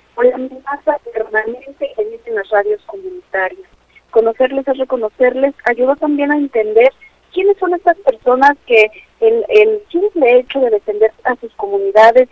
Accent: Mexican